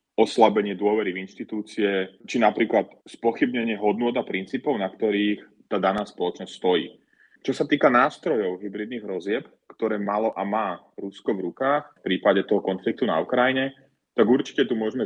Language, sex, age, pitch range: Slovak, male, 30-49, 95-115 Hz